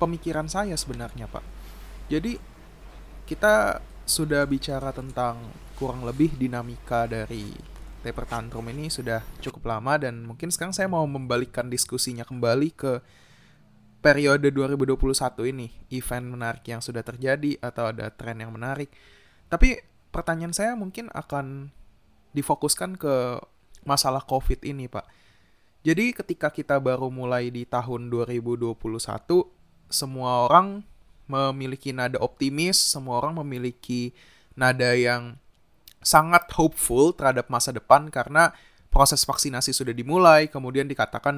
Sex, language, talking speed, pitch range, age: male, Indonesian, 115 wpm, 120-150 Hz, 20-39